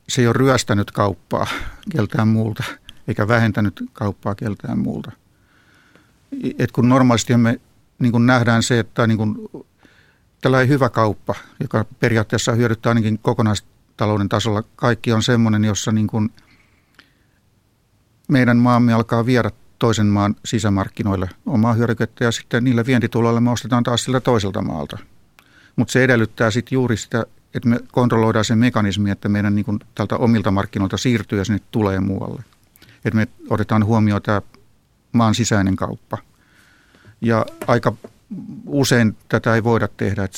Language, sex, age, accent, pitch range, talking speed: Finnish, male, 50-69, native, 105-120 Hz, 145 wpm